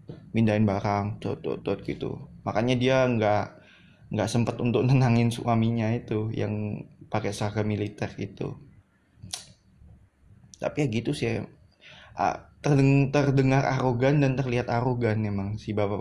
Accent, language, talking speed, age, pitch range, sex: native, Indonesian, 125 wpm, 20-39, 110-140 Hz, male